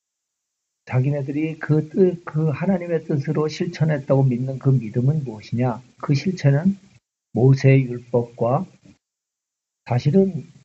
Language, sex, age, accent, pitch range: Korean, male, 50-69, native, 120-150 Hz